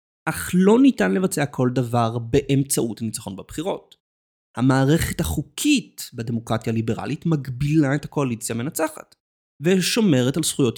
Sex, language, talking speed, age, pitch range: male, Hebrew, 110 wpm, 30-49, 120-175 Hz